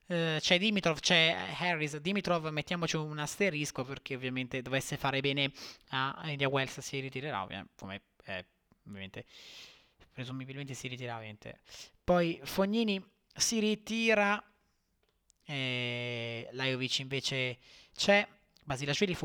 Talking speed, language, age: 110 wpm, Italian, 20-39